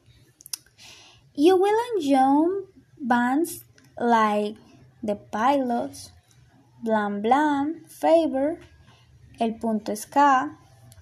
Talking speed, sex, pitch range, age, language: 70 wpm, female, 225-315 Hz, 20-39, English